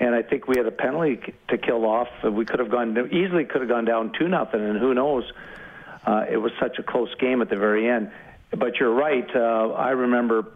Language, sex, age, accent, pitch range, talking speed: English, male, 50-69, American, 105-120 Hz, 235 wpm